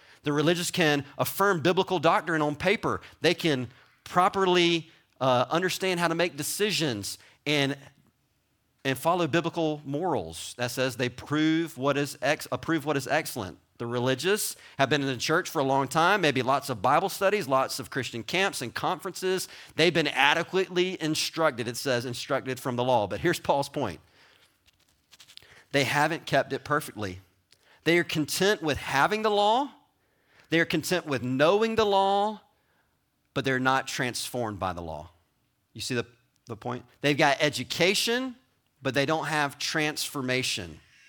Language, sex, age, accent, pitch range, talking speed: English, male, 40-59, American, 125-170 Hz, 155 wpm